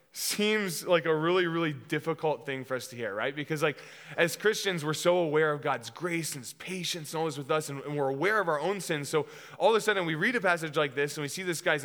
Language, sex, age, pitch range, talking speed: English, male, 20-39, 145-175 Hz, 270 wpm